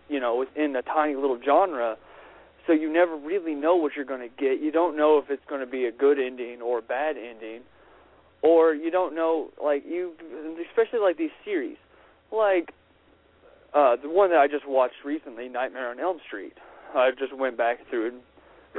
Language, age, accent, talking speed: English, 30-49, American, 190 wpm